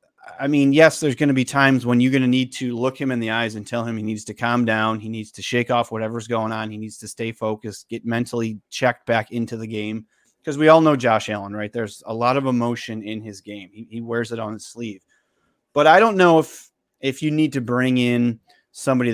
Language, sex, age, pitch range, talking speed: English, male, 30-49, 105-125 Hz, 250 wpm